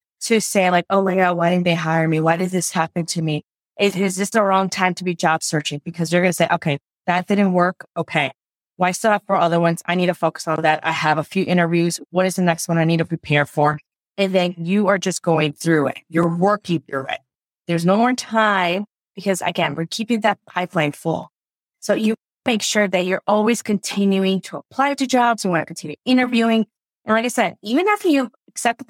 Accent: American